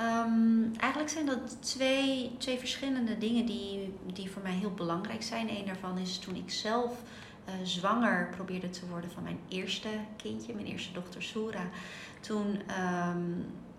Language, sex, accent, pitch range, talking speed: Dutch, female, Dutch, 180-225 Hz, 155 wpm